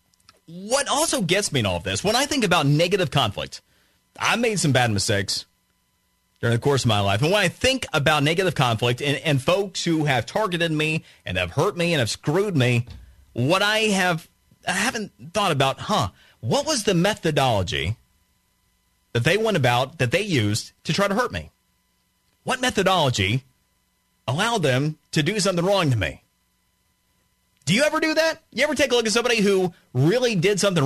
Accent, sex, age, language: American, male, 30-49, English